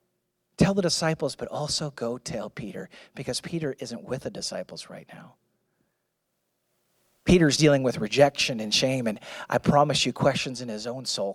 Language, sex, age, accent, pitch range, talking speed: English, male, 30-49, American, 130-165 Hz, 165 wpm